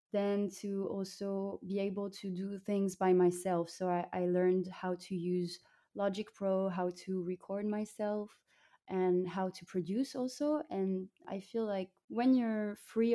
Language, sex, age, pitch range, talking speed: English, female, 20-39, 180-205 Hz, 160 wpm